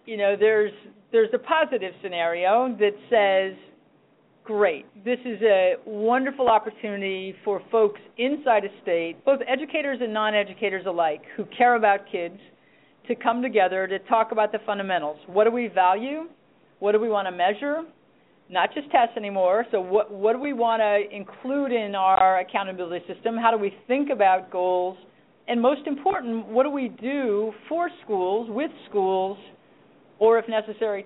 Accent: American